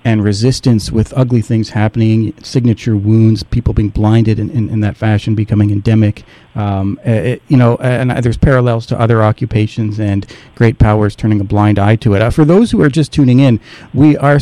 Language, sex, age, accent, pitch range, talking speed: English, male, 40-59, American, 110-135 Hz, 200 wpm